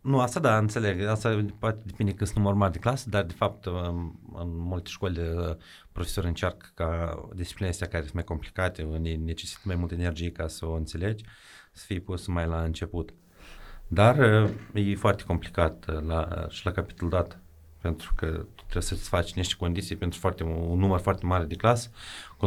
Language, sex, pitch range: Romanian, male, 85-100 Hz